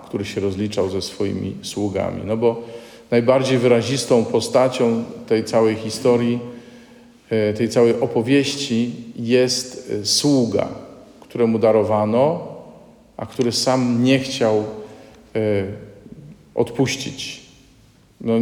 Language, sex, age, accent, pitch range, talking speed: Polish, male, 40-59, native, 110-130 Hz, 90 wpm